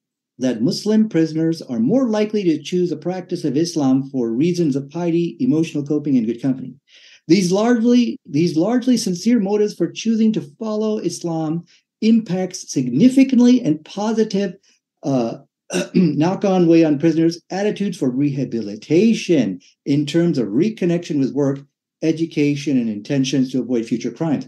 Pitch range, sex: 135-200 Hz, male